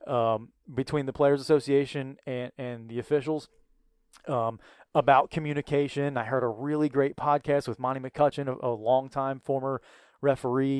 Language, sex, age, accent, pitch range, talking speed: English, male, 30-49, American, 125-145 Hz, 145 wpm